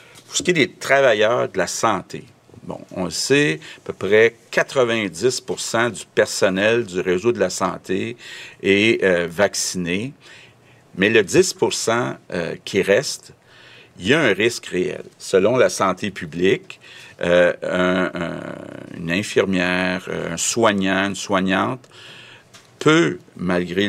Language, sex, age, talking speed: French, male, 50-69, 135 wpm